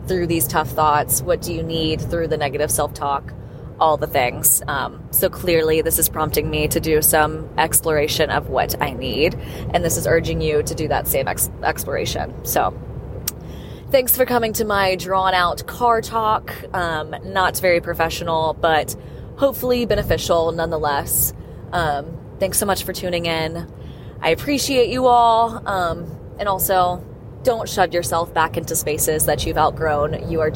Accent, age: American, 20-39